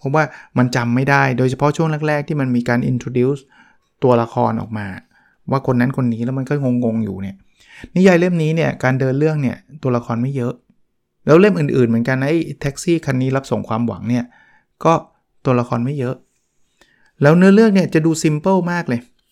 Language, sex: Thai, male